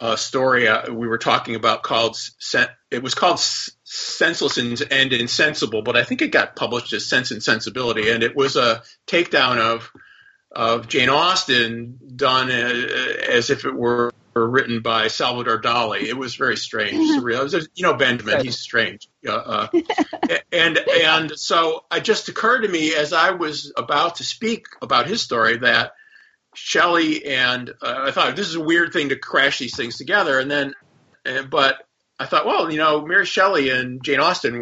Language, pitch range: English, 115-165 Hz